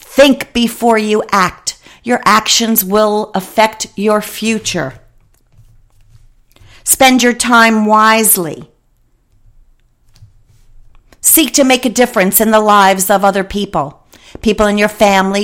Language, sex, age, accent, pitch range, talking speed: English, female, 50-69, American, 175-220 Hz, 115 wpm